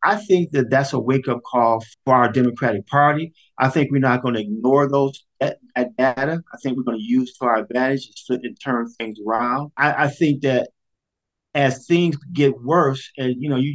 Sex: male